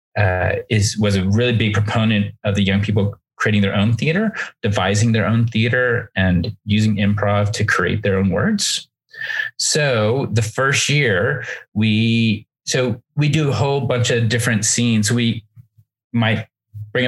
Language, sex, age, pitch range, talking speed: English, male, 30-49, 105-125 Hz, 155 wpm